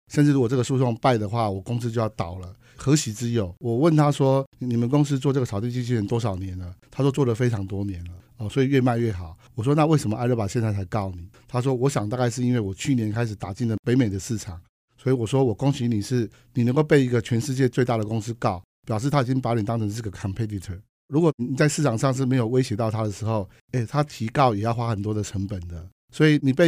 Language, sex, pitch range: Chinese, male, 110-135 Hz